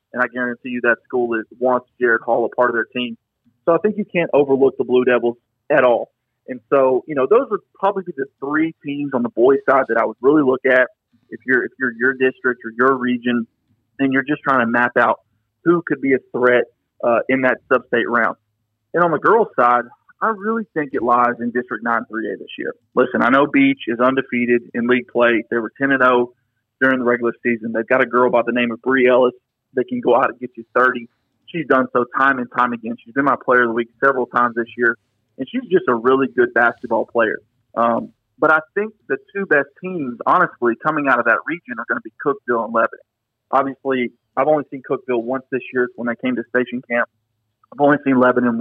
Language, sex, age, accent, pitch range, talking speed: English, male, 30-49, American, 120-135 Hz, 230 wpm